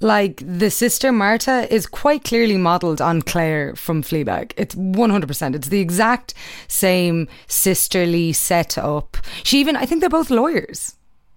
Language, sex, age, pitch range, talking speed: English, female, 20-39, 170-225 Hz, 155 wpm